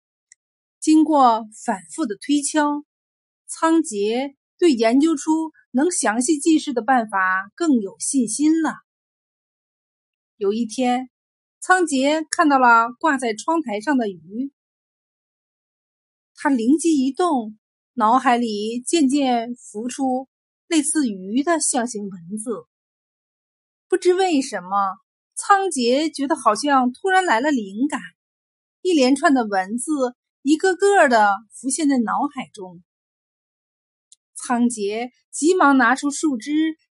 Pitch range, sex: 225-315 Hz, female